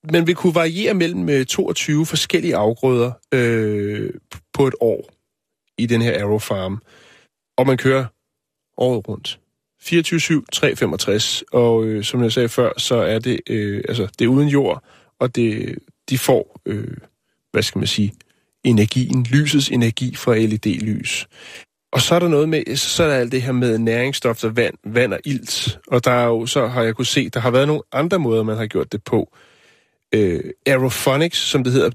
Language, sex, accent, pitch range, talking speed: Danish, male, native, 115-140 Hz, 180 wpm